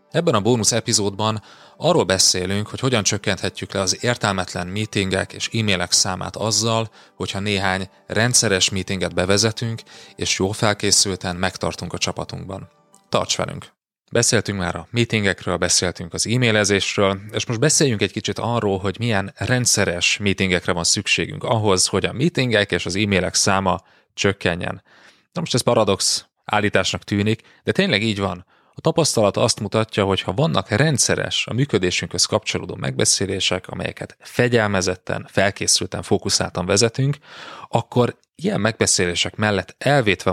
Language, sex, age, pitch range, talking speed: Hungarian, male, 30-49, 95-110 Hz, 135 wpm